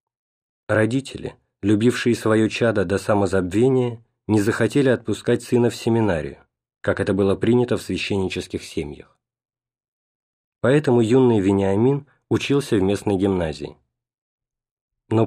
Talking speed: 105 wpm